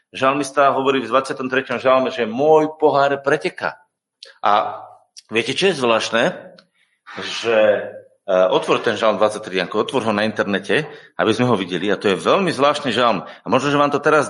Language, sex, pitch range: Slovak, male, 110-140 Hz